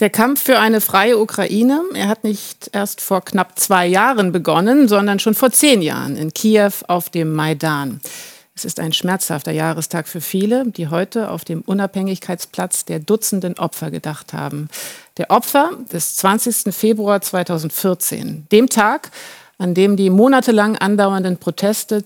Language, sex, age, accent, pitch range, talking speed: German, female, 50-69, German, 170-215 Hz, 150 wpm